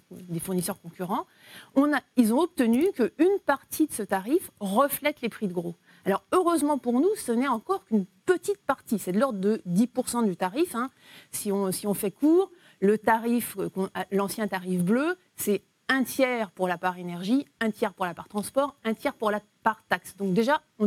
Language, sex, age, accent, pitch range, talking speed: French, female, 30-49, French, 195-280 Hz, 185 wpm